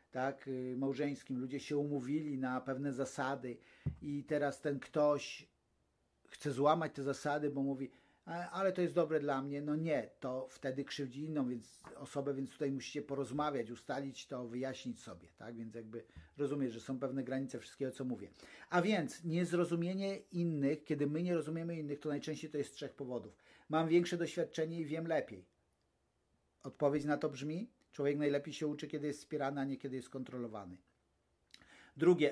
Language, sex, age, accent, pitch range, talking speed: Polish, male, 50-69, native, 135-160 Hz, 165 wpm